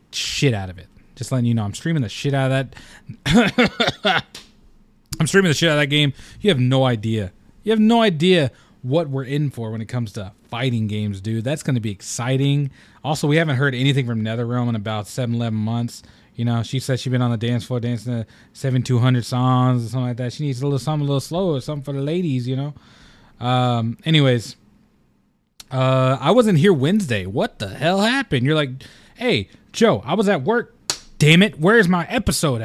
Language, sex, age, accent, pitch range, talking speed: English, male, 20-39, American, 120-155 Hz, 210 wpm